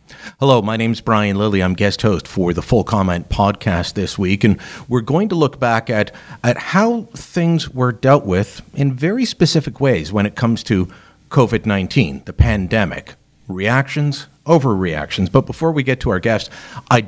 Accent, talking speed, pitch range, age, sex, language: American, 175 wpm, 105-145 Hz, 50-69, male, English